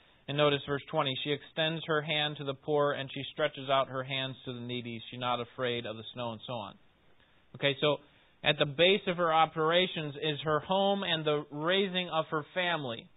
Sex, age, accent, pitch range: male, 30-49, American, 130-155 Hz